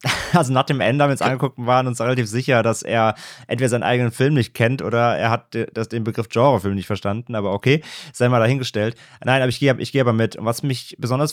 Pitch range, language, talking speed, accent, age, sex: 115-150 Hz, German, 235 wpm, German, 30-49, male